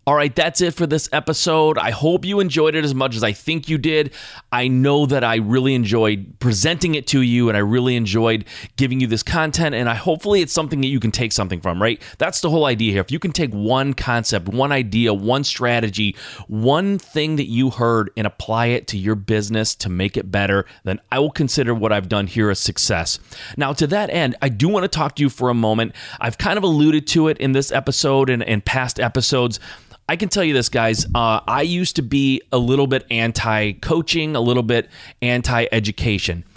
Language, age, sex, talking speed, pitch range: English, 30-49, male, 220 wpm, 105-140 Hz